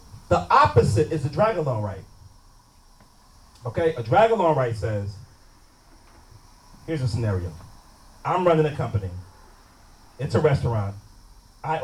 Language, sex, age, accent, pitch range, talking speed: English, male, 30-49, American, 95-130 Hz, 120 wpm